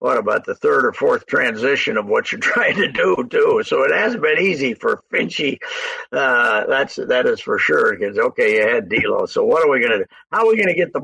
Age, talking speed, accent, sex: 60-79, 250 wpm, American, male